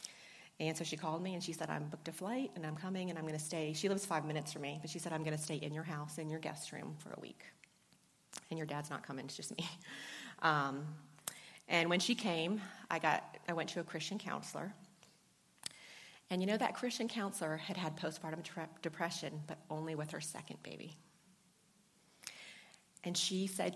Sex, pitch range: female, 160-200 Hz